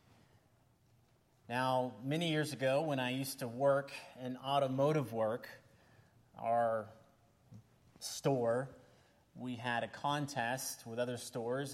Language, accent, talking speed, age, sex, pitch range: English, American, 105 wpm, 30-49, male, 125-155 Hz